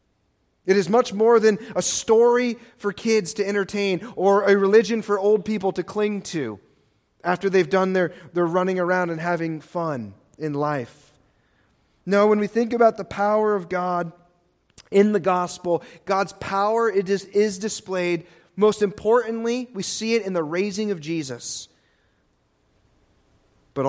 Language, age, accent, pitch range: English, 30-49, American, 150-200 Hz